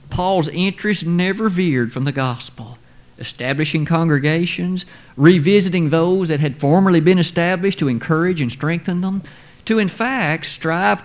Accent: American